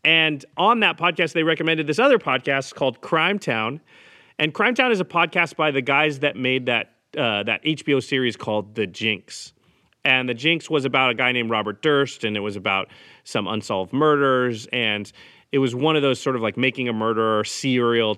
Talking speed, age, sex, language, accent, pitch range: 200 wpm, 30-49, male, English, American, 110-145 Hz